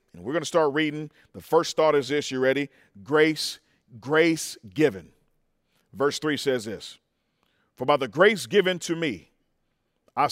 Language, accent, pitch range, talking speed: English, American, 145-180 Hz, 165 wpm